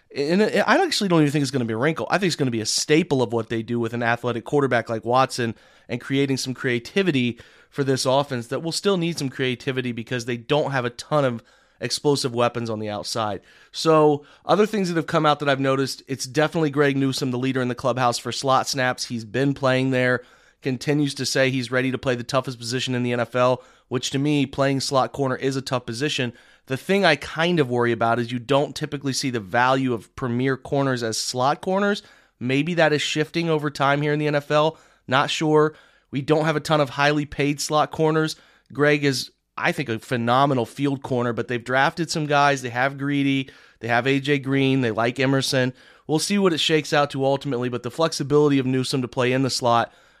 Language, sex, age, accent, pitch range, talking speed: English, male, 30-49, American, 125-150 Hz, 225 wpm